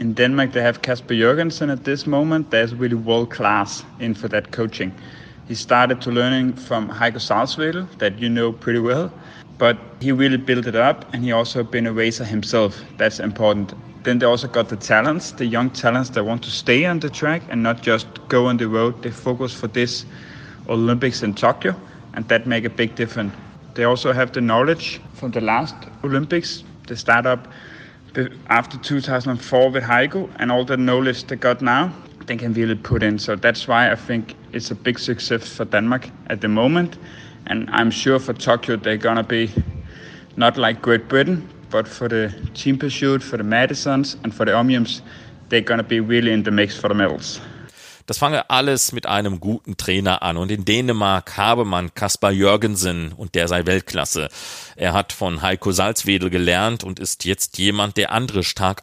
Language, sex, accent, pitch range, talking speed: German, male, Danish, 105-125 Hz, 190 wpm